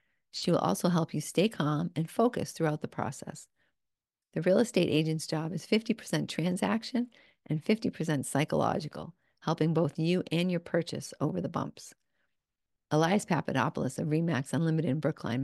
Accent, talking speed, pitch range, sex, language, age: American, 150 wpm, 155-185 Hz, female, English, 40-59